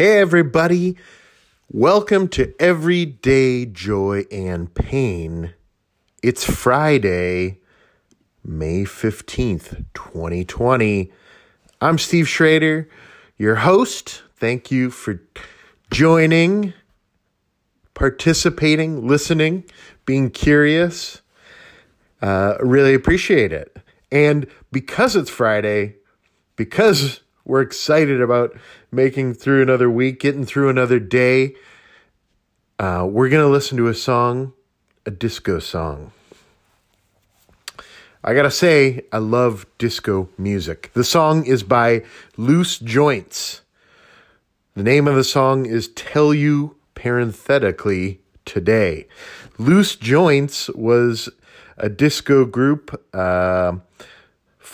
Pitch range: 105-145 Hz